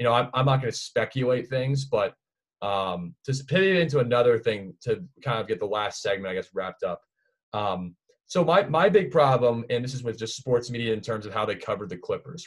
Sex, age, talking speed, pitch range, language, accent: male, 20-39, 230 wpm, 105-130 Hz, English, American